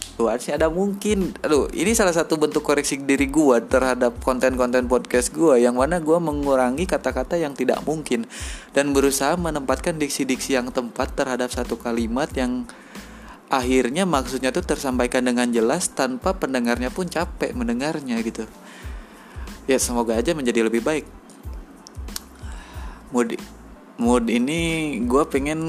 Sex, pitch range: male, 120-155 Hz